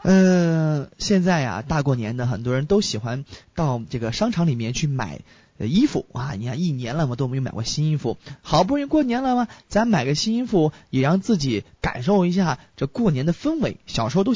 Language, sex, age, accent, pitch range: Chinese, male, 20-39, native, 120-190 Hz